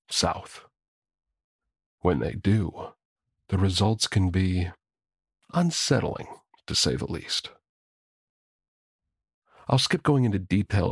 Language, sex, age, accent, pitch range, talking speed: English, male, 40-59, American, 90-110 Hz, 100 wpm